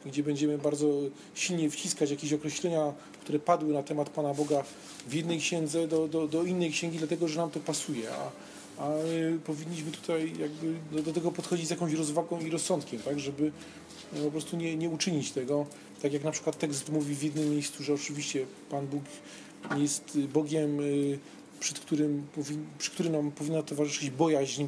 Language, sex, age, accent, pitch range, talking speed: Polish, male, 40-59, native, 145-165 Hz, 175 wpm